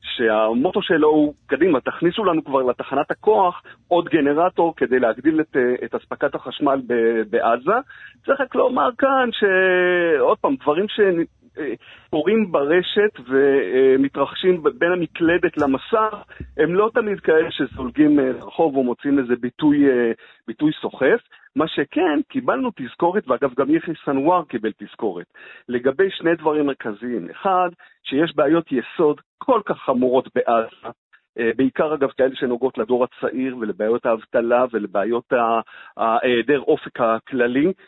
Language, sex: Hebrew, male